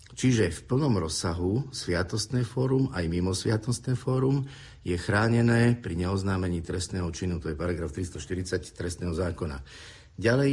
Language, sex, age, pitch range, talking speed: Slovak, male, 50-69, 90-120 Hz, 130 wpm